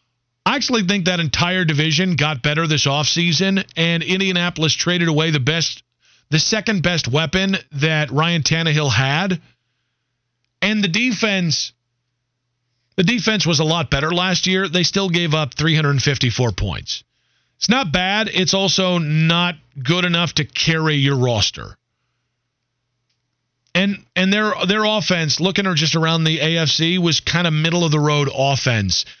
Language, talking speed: English, 155 wpm